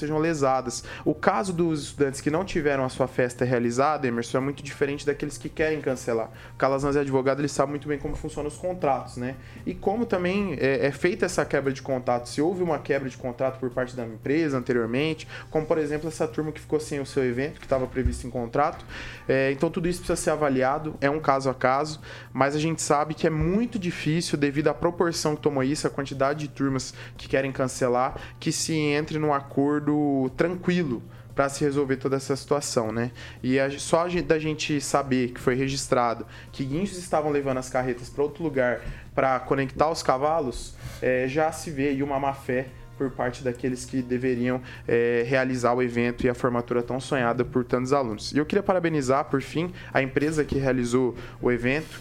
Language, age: Portuguese, 20-39